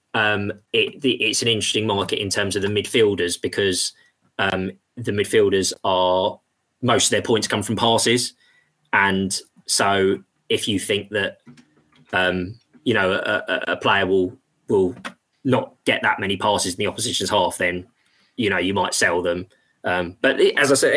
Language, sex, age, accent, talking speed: English, male, 20-39, British, 170 wpm